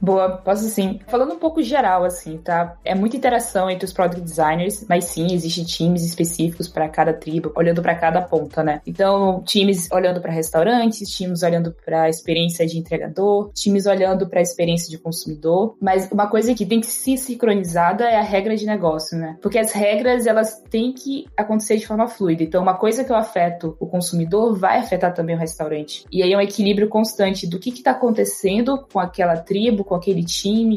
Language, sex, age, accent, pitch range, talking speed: Portuguese, female, 20-39, Brazilian, 175-215 Hz, 200 wpm